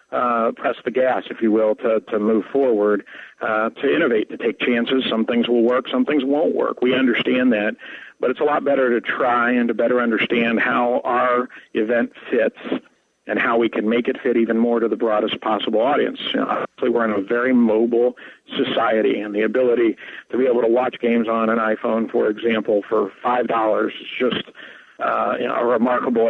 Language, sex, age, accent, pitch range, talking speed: English, male, 50-69, American, 110-125 Hz, 200 wpm